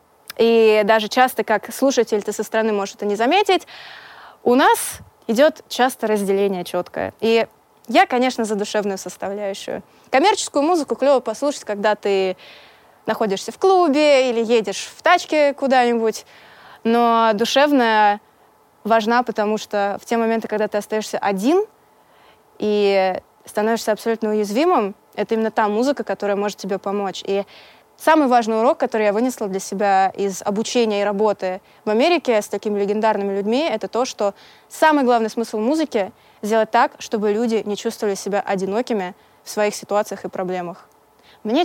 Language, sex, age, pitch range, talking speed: Russian, female, 20-39, 205-245 Hz, 145 wpm